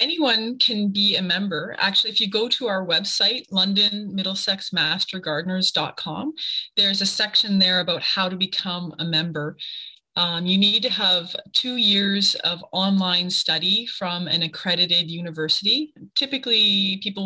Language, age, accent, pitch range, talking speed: English, 20-39, American, 175-215 Hz, 135 wpm